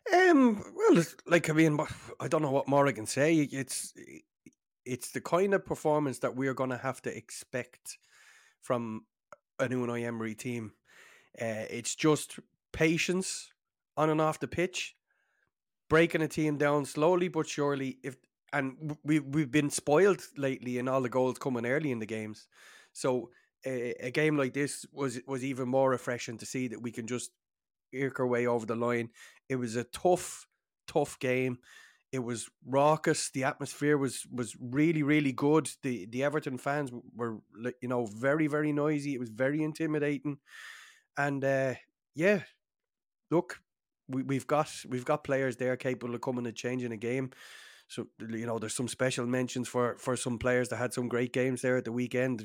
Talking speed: 180 wpm